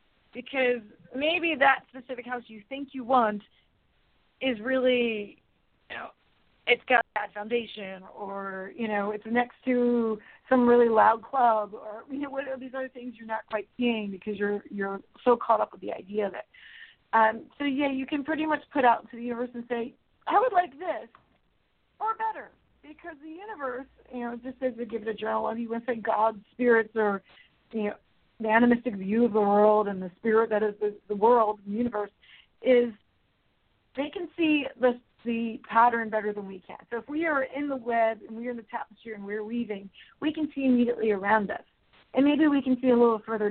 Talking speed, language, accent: 205 wpm, English, American